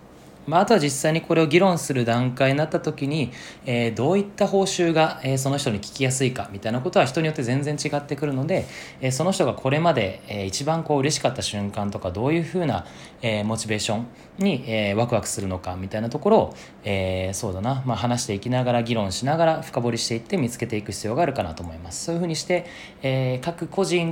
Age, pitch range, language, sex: 20-39, 105-155 Hz, Japanese, male